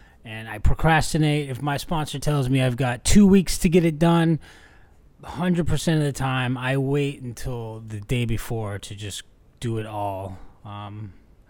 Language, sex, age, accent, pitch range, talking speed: English, male, 20-39, American, 110-145 Hz, 165 wpm